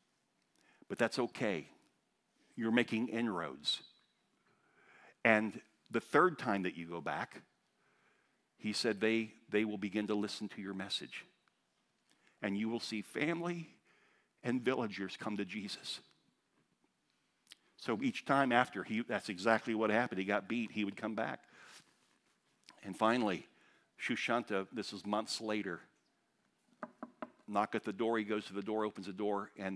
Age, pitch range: 50-69, 100-120 Hz